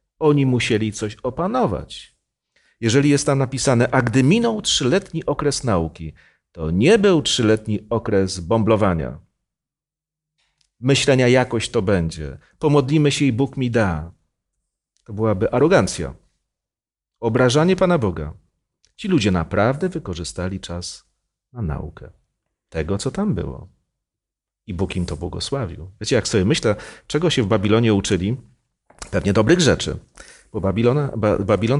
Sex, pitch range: male, 85-130 Hz